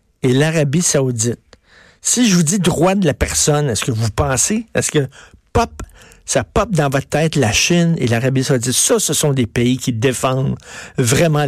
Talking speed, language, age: 190 wpm, French, 60-79